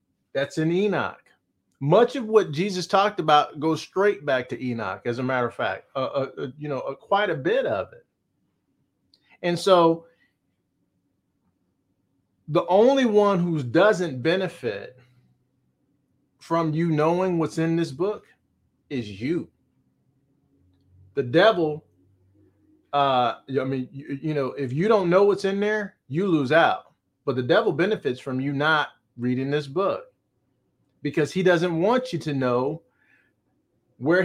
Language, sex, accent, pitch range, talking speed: English, male, American, 130-175 Hz, 145 wpm